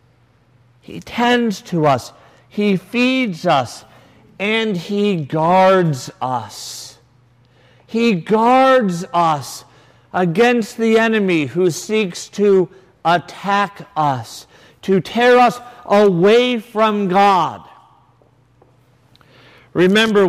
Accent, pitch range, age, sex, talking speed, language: American, 175-230 Hz, 50-69, male, 85 wpm, English